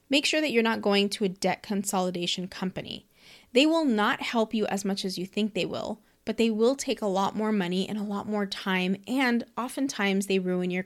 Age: 20-39